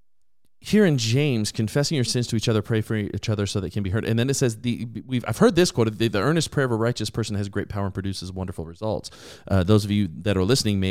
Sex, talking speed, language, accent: male, 275 wpm, English, American